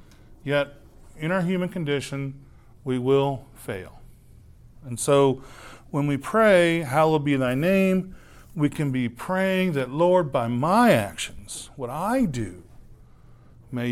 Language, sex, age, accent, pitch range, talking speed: English, male, 40-59, American, 120-165 Hz, 130 wpm